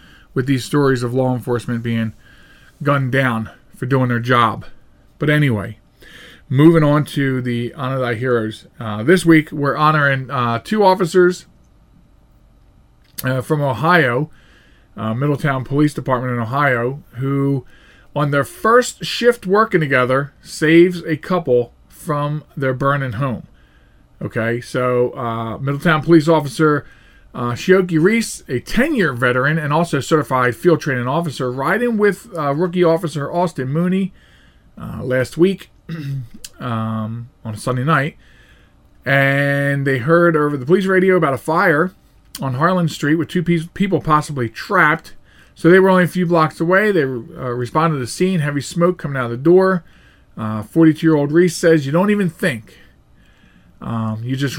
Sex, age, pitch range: male, 40-59, 125-165 Hz